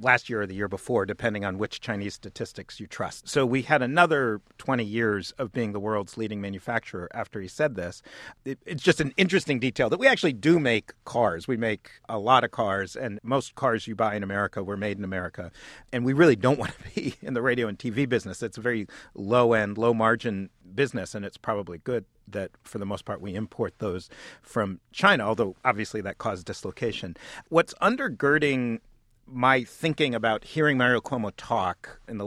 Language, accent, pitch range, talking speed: English, American, 100-125 Hz, 195 wpm